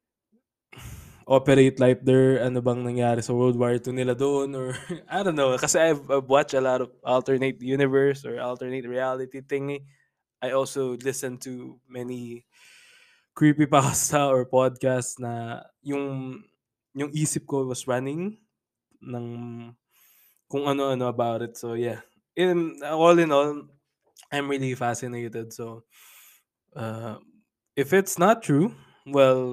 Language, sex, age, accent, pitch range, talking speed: Filipino, male, 20-39, native, 120-145 Hz, 130 wpm